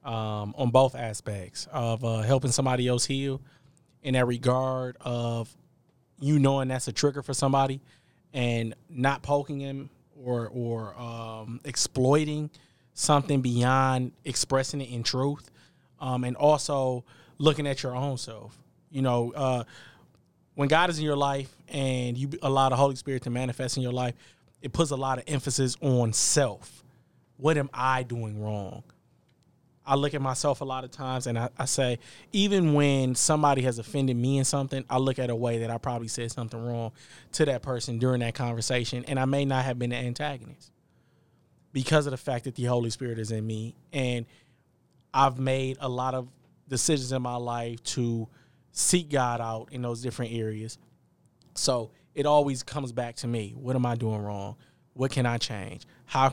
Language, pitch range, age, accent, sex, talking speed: English, 120-140 Hz, 20-39, American, male, 180 wpm